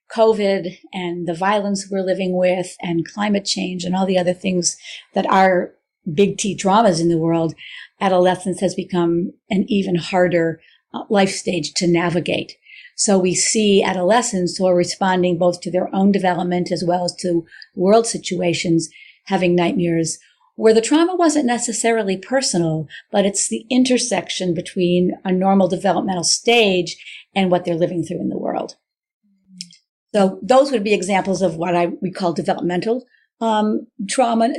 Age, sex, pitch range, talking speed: 50-69, female, 175-220 Hz, 155 wpm